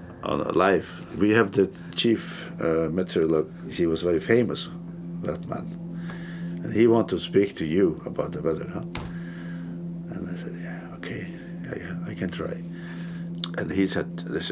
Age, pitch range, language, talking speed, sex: 60-79, 85-90 Hz, English, 160 wpm, male